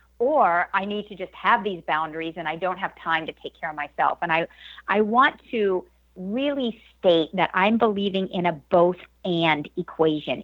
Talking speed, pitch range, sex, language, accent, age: 190 wpm, 165-210 Hz, female, English, American, 50-69